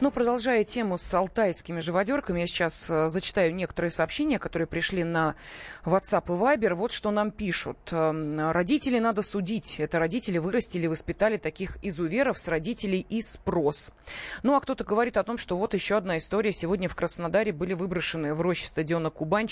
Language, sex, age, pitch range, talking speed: Russian, female, 20-39, 165-225 Hz, 170 wpm